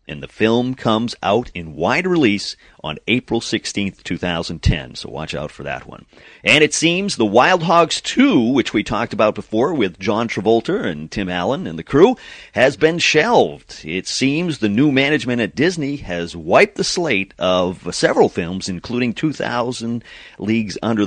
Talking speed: 175 wpm